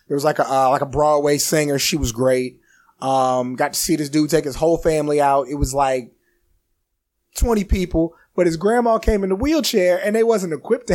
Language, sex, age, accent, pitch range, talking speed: English, male, 20-39, American, 135-165 Hz, 220 wpm